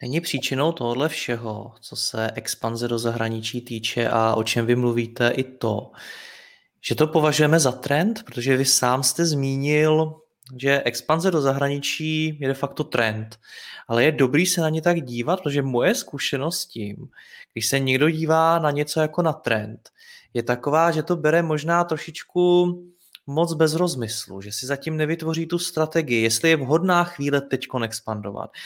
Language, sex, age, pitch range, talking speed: Czech, male, 20-39, 120-165 Hz, 165 wpm